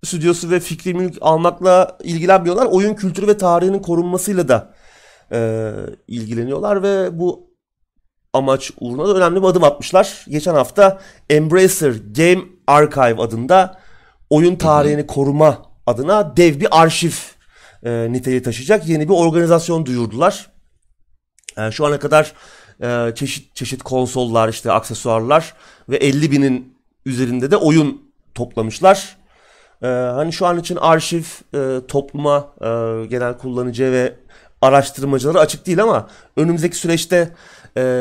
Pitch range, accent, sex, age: 125-175 Hz, native, male, 30-49